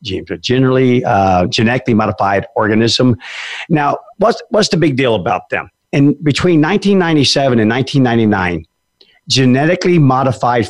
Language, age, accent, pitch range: English, 50-69, American, 105-140 Hz